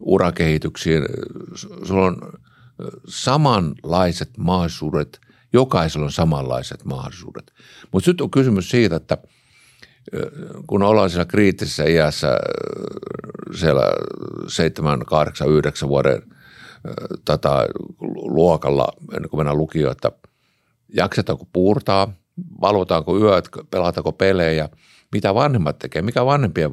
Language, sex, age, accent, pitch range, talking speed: Finnish, male, 50-69, native, 80-115 Hz, 95 wpm